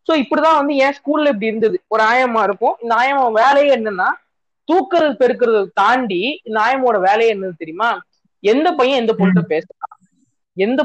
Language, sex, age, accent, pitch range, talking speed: Tamil, female, 20-39, native, 200-255 Hz, 155 wpm